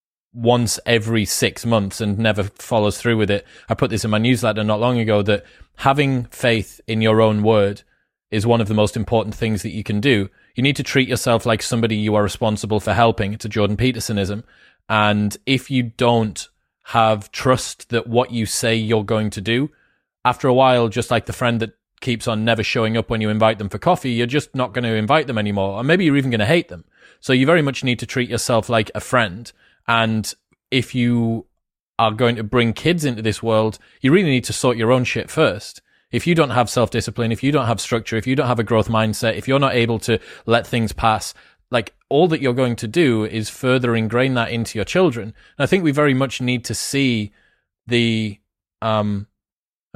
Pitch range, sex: 110-125 Hz, male